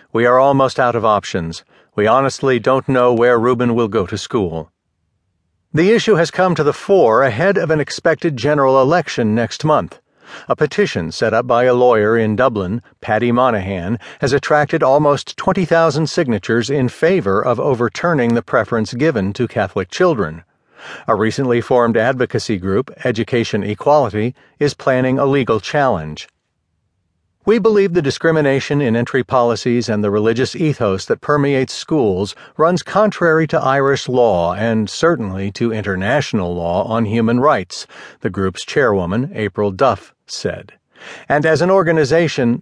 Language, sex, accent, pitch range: English, male, American, 110-145 Hz